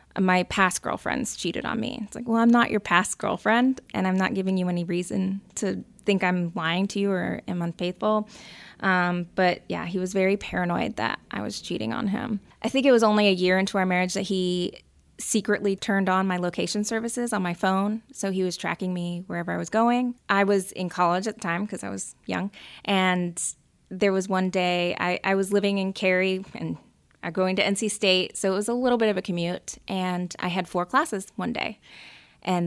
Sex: female